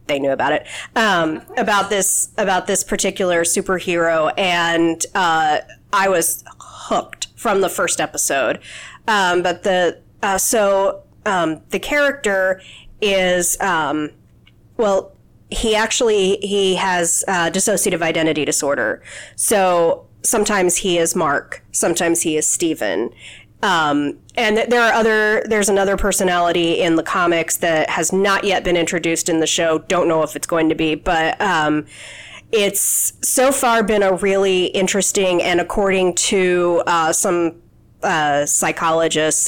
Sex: female